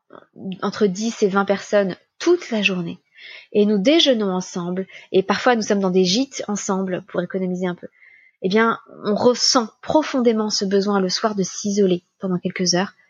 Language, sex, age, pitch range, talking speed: French, female, 20-39, 190-250 Hz, 175 wpm